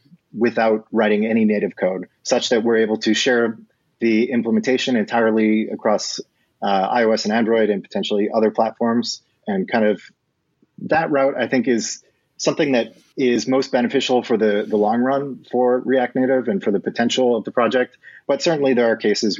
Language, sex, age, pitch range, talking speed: English, male, 30-49, 105-135 Hz, 175 wpm